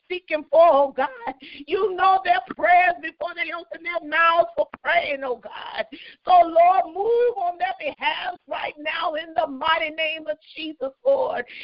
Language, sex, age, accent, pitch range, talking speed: English, female, 50-69, American, 300-355 Hz, 165 wpm